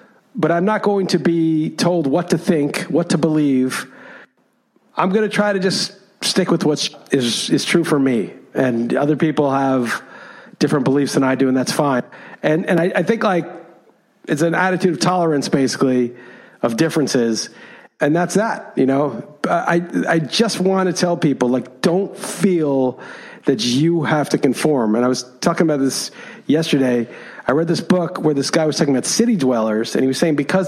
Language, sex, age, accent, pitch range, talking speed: English, male, 50-69, American, 135-170 Hz, 190 wpm